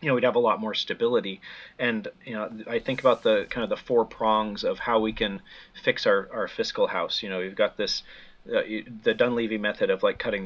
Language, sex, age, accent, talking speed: English, male, 30-49, American, 240 wpm